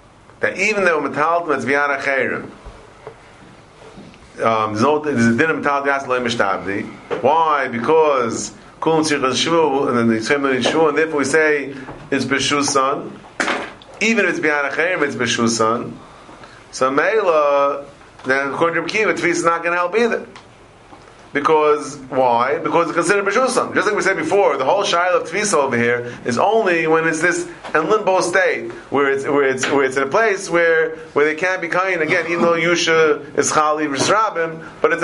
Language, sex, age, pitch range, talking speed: English, male, 40-59, 140-180 Hz, 170 wpm